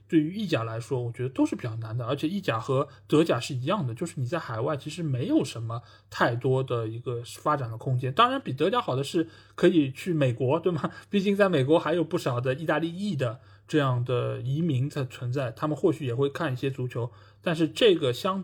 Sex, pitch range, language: male, 120-155 Hz, Chinese